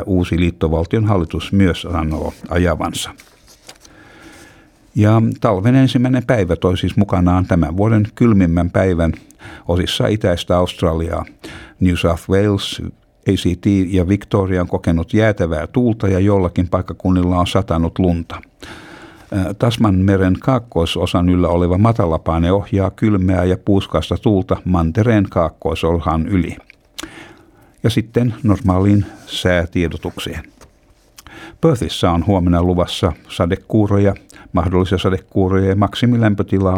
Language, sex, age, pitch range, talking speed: Finnish, male, 60-79, 85-100 Hz, 100 wpm